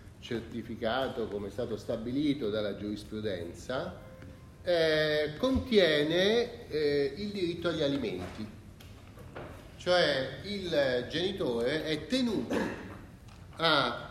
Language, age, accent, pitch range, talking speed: Italian, 40-59, native, 110-165 Hz, 85 wpm